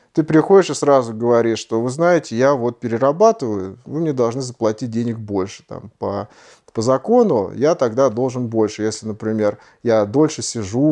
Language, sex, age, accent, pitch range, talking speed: Russian, male, 30-49, native, 110-150 Hz, 165 wpm